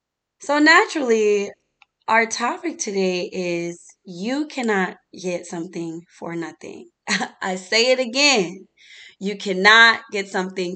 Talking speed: 110 wpm